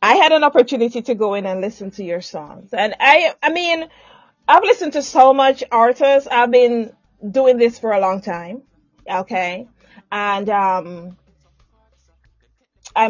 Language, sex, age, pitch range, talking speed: English, female, 30-49, 205-290 Hz, 155 wpm